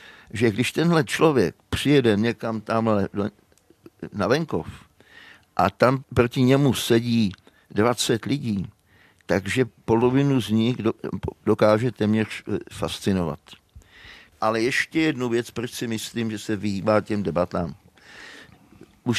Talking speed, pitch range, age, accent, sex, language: 115 wpm, 105-125 Hz, 60-79, native, male, Czech